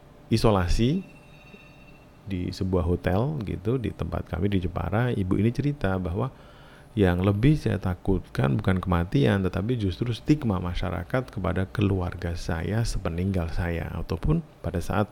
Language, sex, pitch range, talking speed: Indonesian, male, 90-130 Hz, 125 wpm